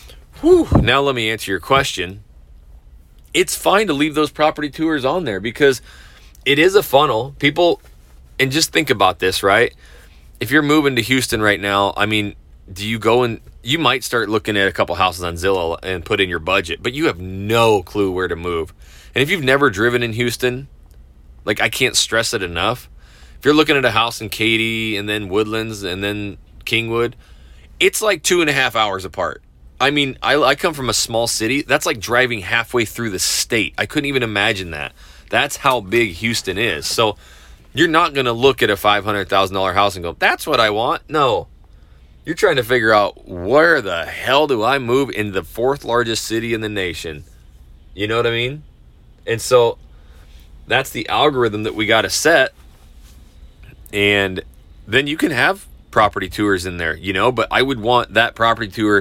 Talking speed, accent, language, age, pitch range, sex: 195 wpm, American, English, 20-39, 85-120 Hz, male